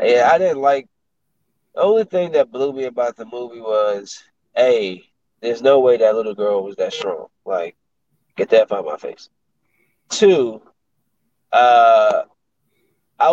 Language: English